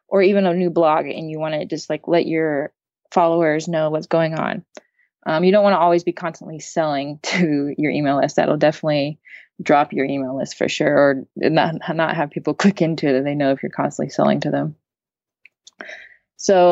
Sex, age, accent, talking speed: female, 20-39, American, 205 wpm